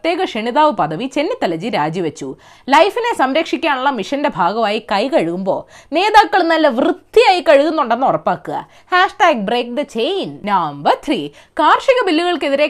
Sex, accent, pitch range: female, native, 240-355 Hz